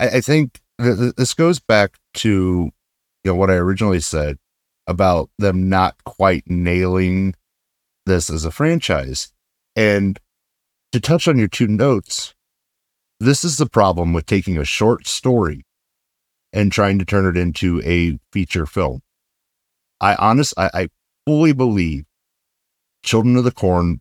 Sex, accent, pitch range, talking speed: male, American, 90-110 Hz, 140 wpm